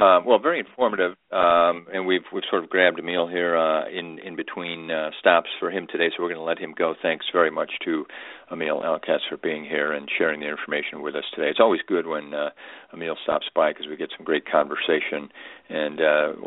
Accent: American